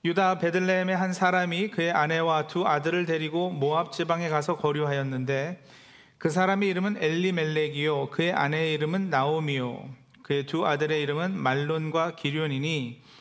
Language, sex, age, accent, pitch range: Korean, male, 40-59, native, 140-175 Hz